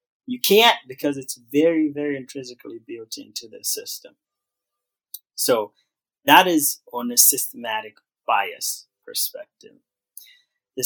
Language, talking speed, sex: English, 110 wpm, male